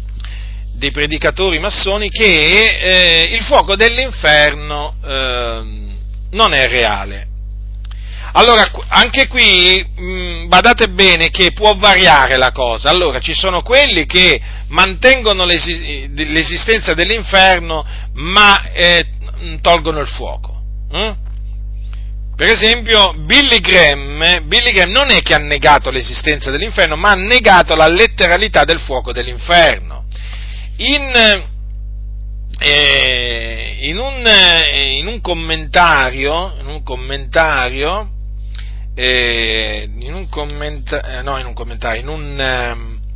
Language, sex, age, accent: Italian, male, 40-59, native